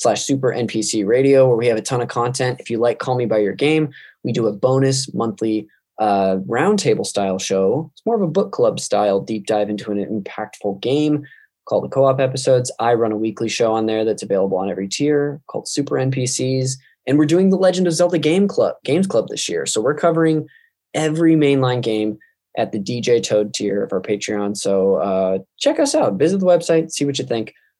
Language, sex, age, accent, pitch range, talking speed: English, male, 20-39, American, 105-145 Hz, 215 wpm